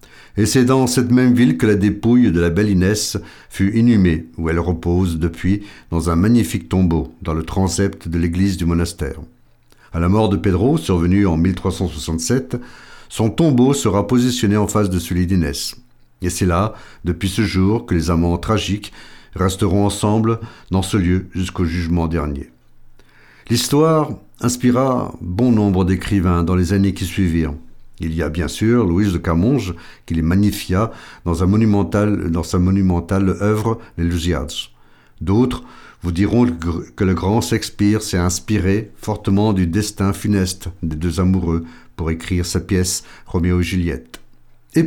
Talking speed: 160 wpm